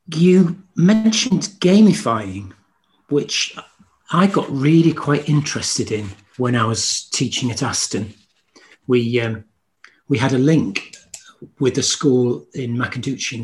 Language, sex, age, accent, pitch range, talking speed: English, male, 40-59, British, 115-155 Hz, 125 wpm